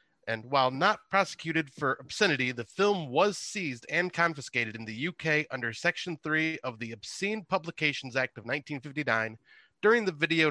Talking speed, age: 160 wpm, 30-49